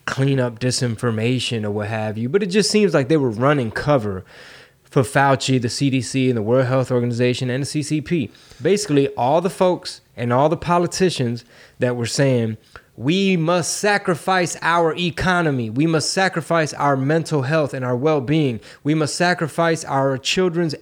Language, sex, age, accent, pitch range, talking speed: English, male, 20-39, American, 125-165 Hz, 165 wpm